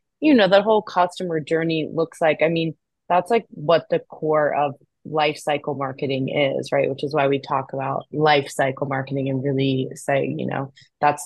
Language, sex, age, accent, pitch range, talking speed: English, female, 20-39, American, 140-160 Hz, 185 wpm